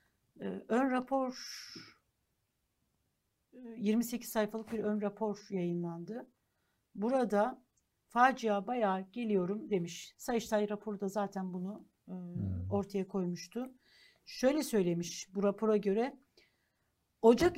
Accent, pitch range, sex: native, 200-230 Hz, female